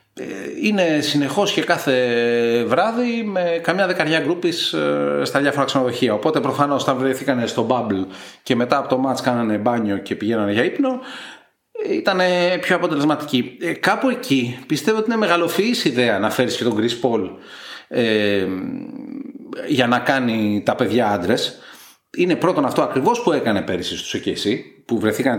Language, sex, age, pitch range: Greek, male, 30-49, 115-195 Hz